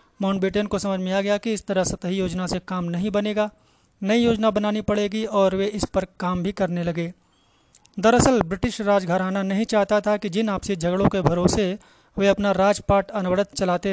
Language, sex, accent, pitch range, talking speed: Hindi, male, native, 185-210 Hz, 190 wpm